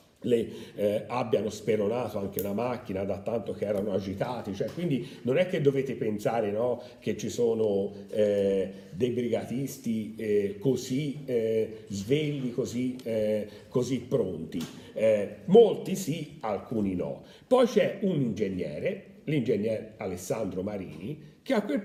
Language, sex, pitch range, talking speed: Italian, male, 95-150 Hz, 135 wpm